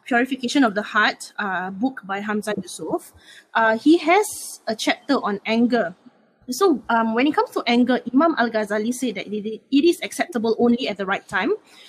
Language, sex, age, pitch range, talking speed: English, female, 20-39, 210-260 Hz, 180 wpm